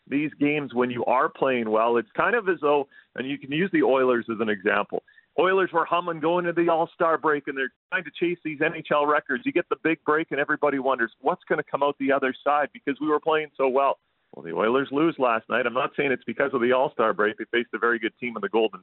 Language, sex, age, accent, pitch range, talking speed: English, male, 40-59, American, 115-150 Hz, 265 wpm